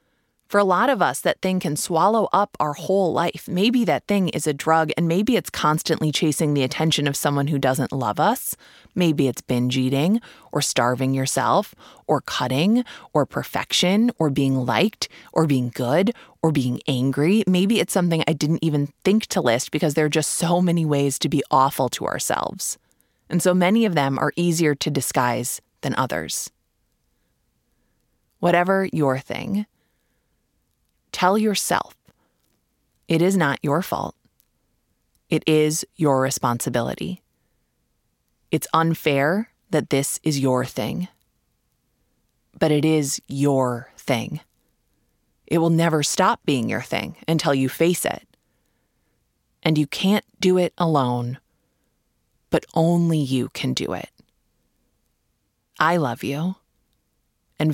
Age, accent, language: 20-39, American, English